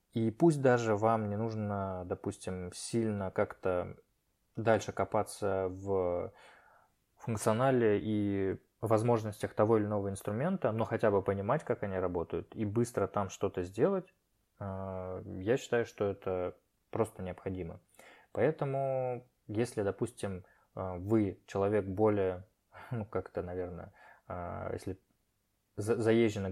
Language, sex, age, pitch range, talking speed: Russian, male, 20-39, 95-115 Hz, 110 wpm